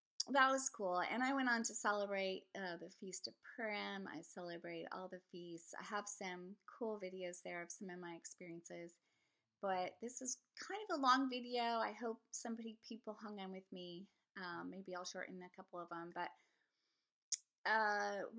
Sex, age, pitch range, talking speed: female, 30-49, 190-235 Hz, 185 wpm